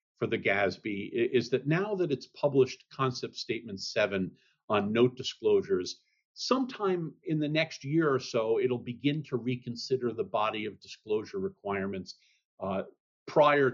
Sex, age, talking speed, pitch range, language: male, 50-69, 145 wpm, 120-150 Hz, English